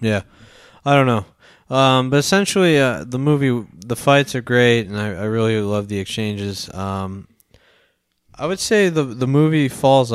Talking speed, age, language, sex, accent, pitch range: 170 wpm, 20-39, English, male, American, 100-120 Hz